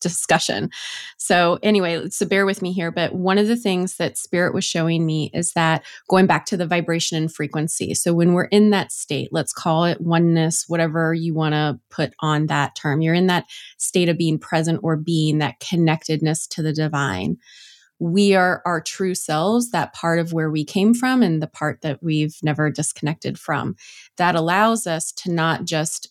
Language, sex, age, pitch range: English, female, 20-39, 155-180 Hz